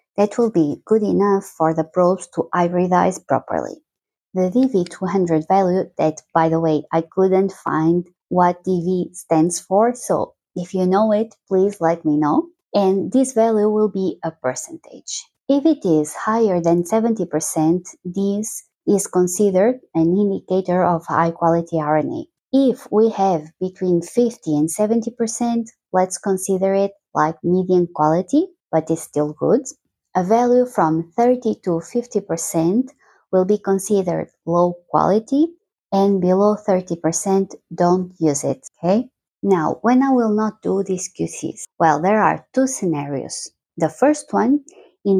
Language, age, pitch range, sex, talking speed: English, 20-39, 170-215 Hz, female, 140 wpm